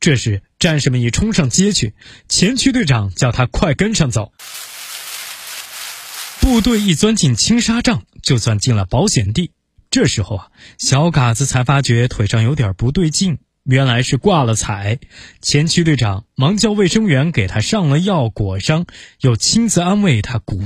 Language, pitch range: Chinese, 115-165 Hz